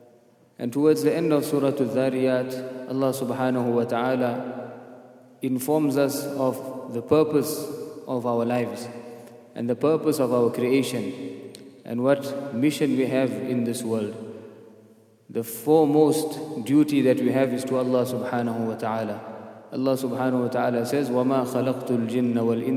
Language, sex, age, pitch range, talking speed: English, male, 20-39, 125-140 Hz, 140 wpm